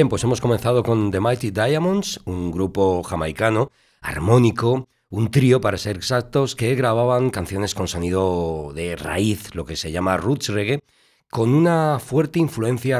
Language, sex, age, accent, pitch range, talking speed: Spanish, male, 40-59, Spanish, 85-115 Hz, 155 wpm